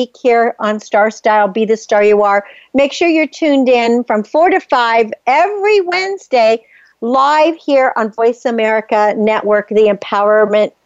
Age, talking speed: 50-69, 155 wpm